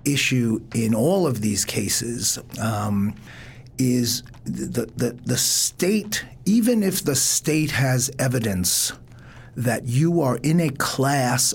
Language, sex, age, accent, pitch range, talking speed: English, male, 50-69, American, 115-145 Hz, 125 wpm